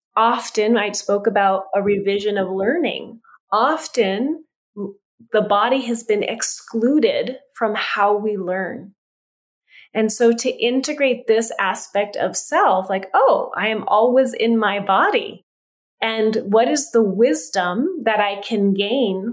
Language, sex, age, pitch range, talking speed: English, female, 30-49, 200-245 Hz, 135 wpm